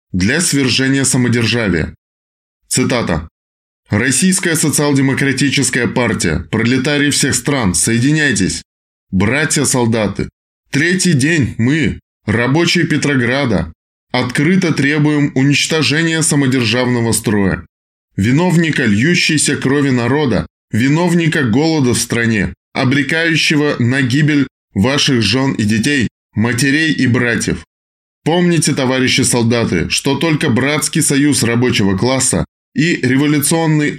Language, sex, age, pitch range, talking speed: Russian, male, 20-39, 115-145 Hz, 90 wpm